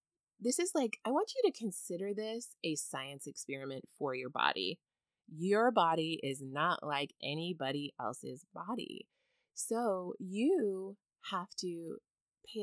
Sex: female